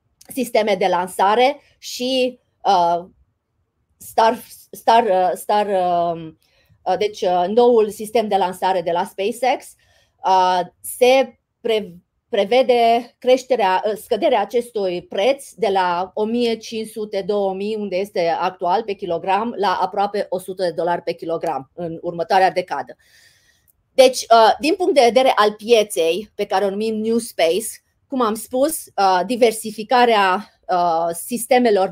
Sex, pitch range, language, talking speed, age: female, 185-235 Hz, Romanian, 120 wpm, 30-49